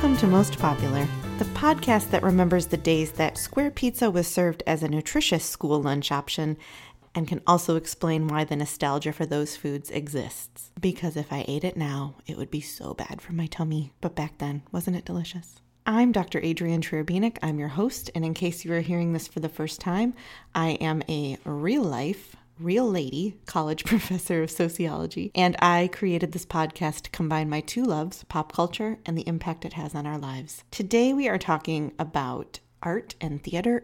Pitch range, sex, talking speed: 155-185 Hz, female, 190 wpm